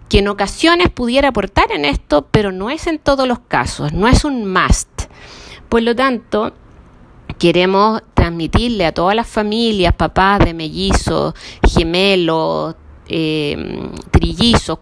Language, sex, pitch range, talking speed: Spanish, female, 185-255 Hz, 135 wpm